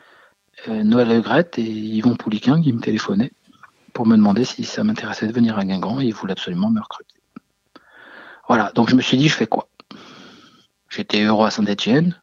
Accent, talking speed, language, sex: French, 180 wpm, French, male